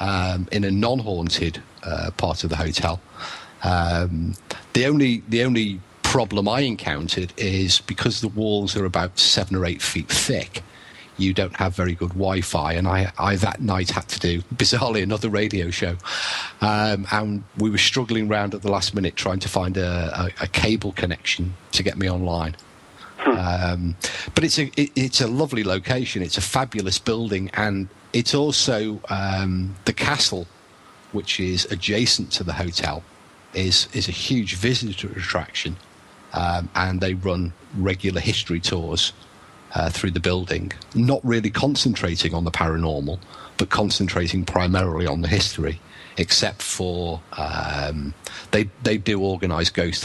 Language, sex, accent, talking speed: English, male, British, 155 wpm